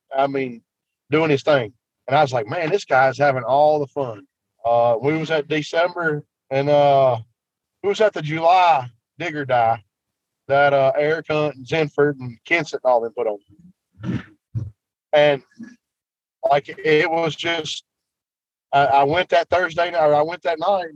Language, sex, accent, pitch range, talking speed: English, male, American, 135-170 Hz, 165 wpm